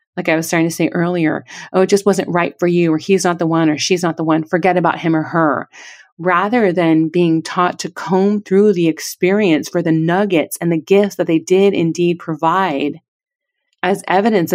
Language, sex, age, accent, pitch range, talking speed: English, female, 30-49, American, 160-195 Hz, 210 wpm